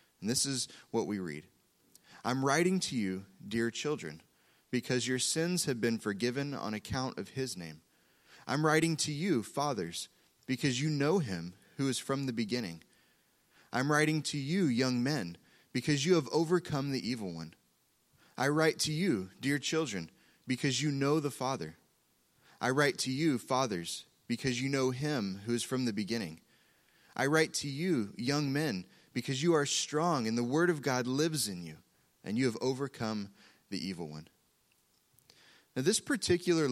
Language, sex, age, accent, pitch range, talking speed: English, male, 30-49, American, 115-155 Hz, 170 wpm